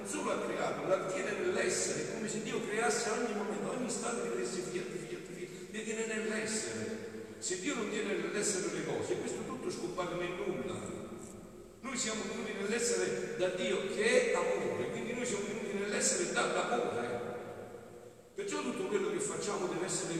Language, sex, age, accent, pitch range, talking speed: Italian, male, 60-79, native, 175-240 Hz, 165 wpm